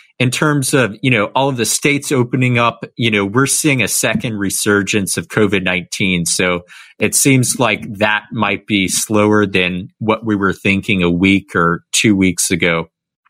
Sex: male